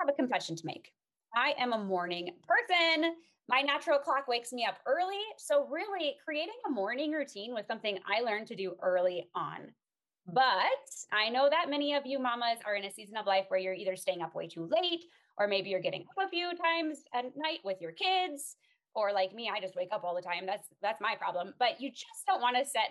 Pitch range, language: 205-300 Hz, English